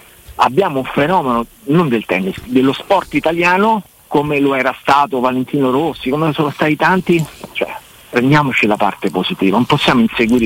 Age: 50-69